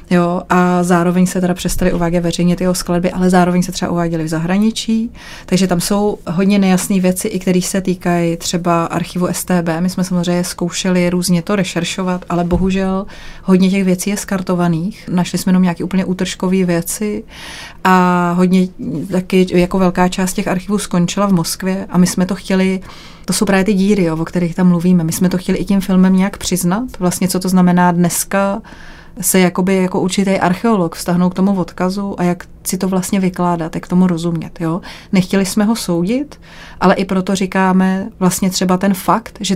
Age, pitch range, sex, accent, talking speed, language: 30-49, 175-190 Hz, female, native, 185 wpm, Czech